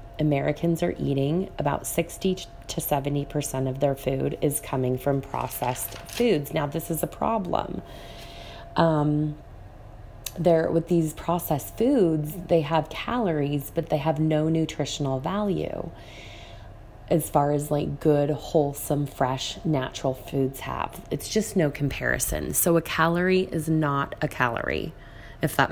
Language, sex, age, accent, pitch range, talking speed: English, female, 20-39, American, 135-165 Hz, 135 wpm